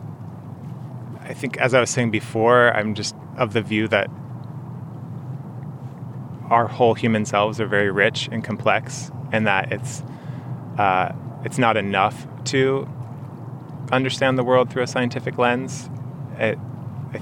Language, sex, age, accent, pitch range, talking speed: English, male, 20-39, American, 110-135 Hz, 130 wpm